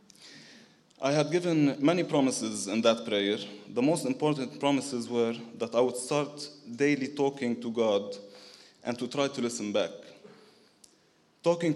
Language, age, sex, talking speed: English, 20-39, male, 145 wpm